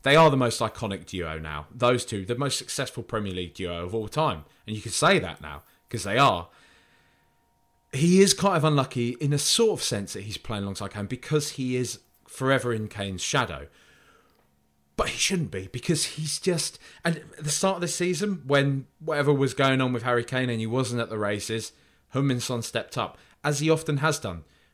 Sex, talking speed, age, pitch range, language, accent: male, 205 wpm, 30-49, 105-145 Hz, English, British